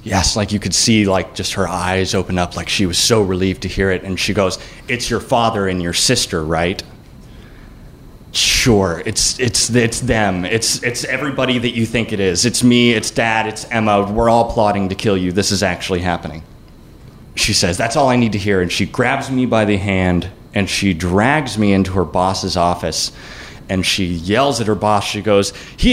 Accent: American